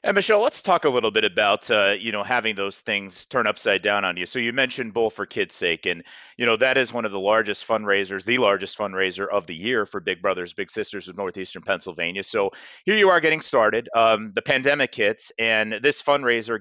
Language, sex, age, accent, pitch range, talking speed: English, male, 30-49, American, 100-125 Hz, 230 wpm